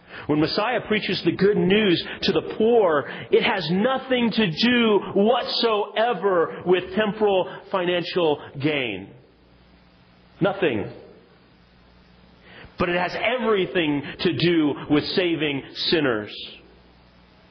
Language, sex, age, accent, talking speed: English, male, 40-59, American, 100 wpm